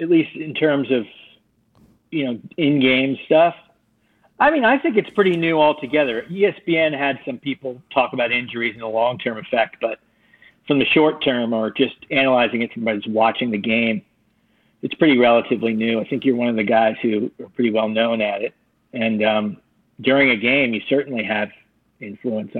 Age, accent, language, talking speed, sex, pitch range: 40-59, American, English, 180 wpm, male, 115-150 Hz